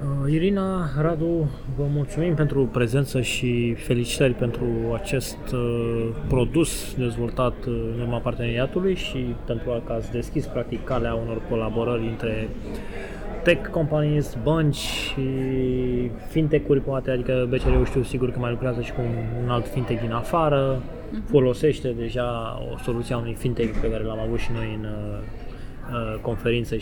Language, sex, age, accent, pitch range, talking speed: English, male, 20-39, Romanian, 115-130 Hz, 130 wpm